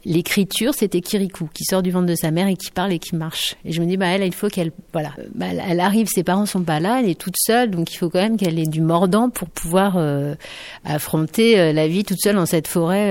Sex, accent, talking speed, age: female, French, 270 wpm, 60-79